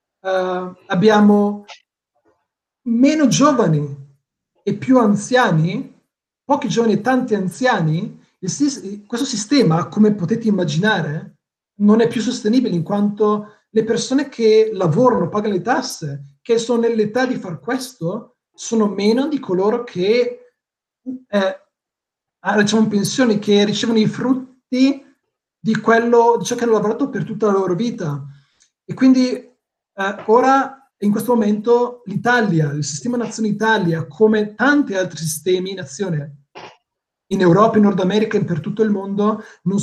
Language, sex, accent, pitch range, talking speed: Italian, male, native, 180-235 Hz, 135 wpm